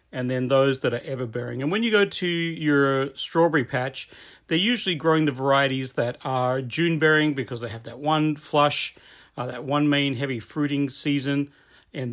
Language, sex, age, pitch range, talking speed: English, male, 40-59, 130-150 Hz, 190 wpm